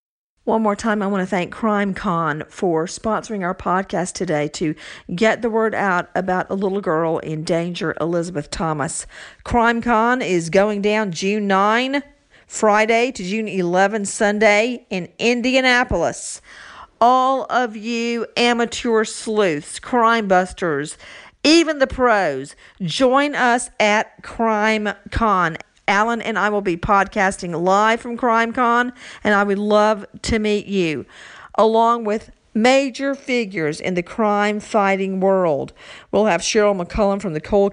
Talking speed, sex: 135 wpm, female